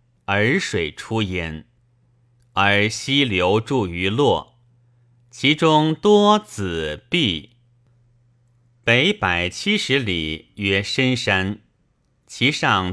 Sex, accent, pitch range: male, native, 105-130 Hz